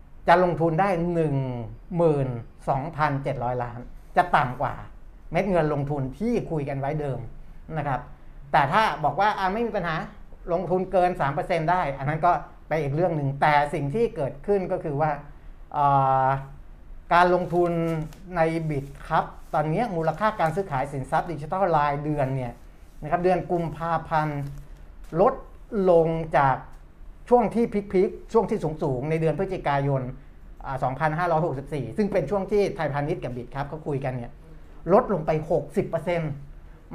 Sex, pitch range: male, 135-175 Hz